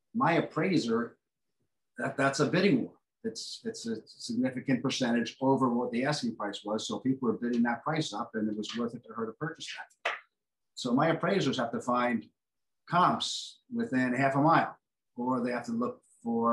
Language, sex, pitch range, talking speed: English, male, 115-145 Hz, 185 wpm